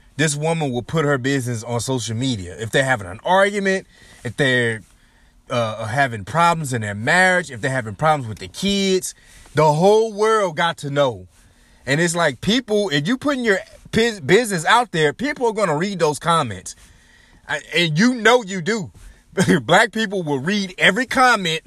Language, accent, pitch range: English, American, 150-220 Hz